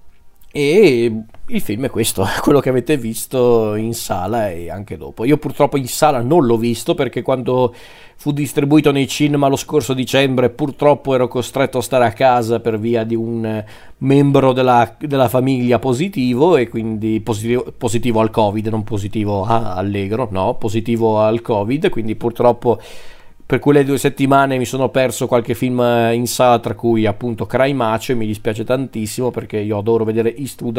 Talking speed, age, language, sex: 170 wpm, 40-59, Italian, male